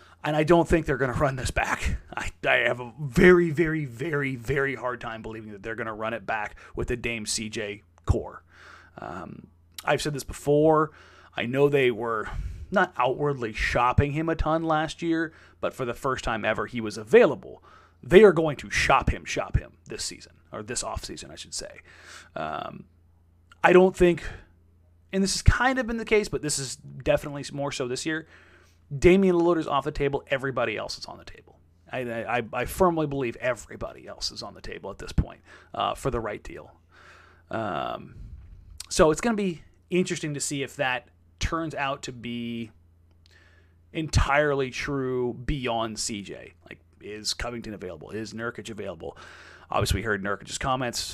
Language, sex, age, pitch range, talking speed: English, male, 30-49, 100-150 Hz, 185 wpm